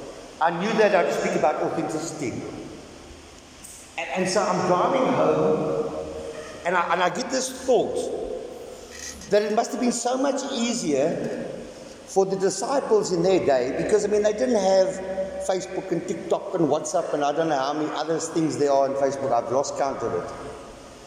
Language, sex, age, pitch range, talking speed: English, male, 50-69, 165-240 Hz, 175 wpm